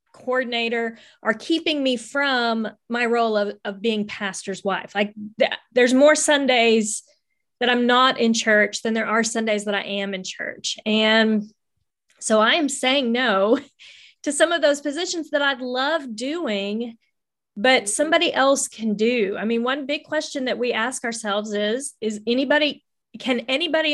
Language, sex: English, female